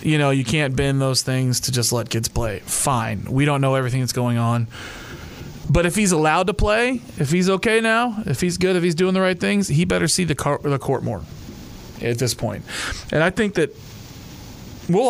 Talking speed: 210 wpm